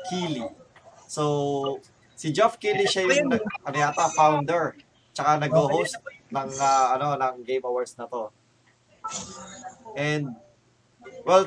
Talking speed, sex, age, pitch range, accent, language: 125 wpm, male, 20-39, 135-195 Hz, native, Filipino